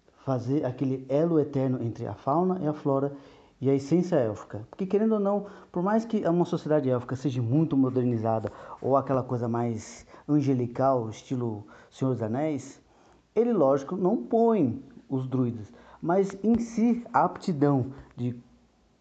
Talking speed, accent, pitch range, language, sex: 150 wpm, Brazilian, 130-185 Hz, Portuguese, male